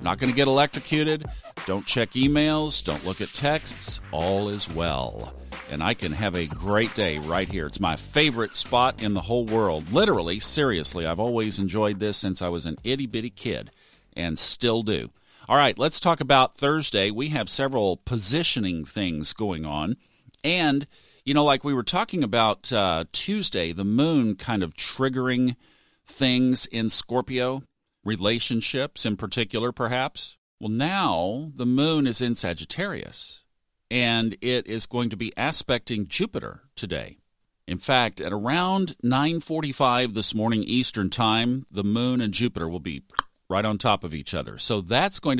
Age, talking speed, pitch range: 50-69, 160 wpm, 100-140 Hz